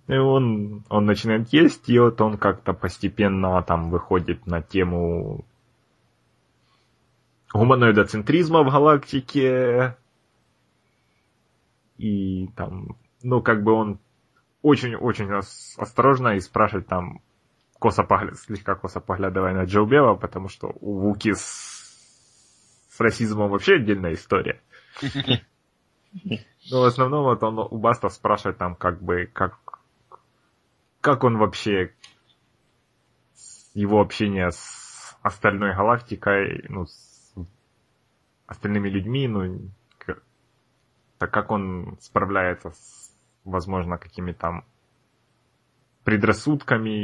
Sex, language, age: male, Russian, 20-39